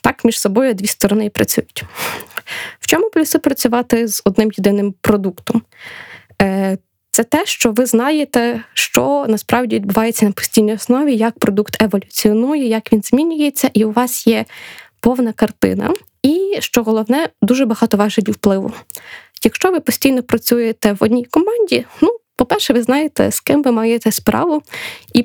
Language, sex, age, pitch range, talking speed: Ukrainian, female, 20-39, 215-260 Hz, 145 wpm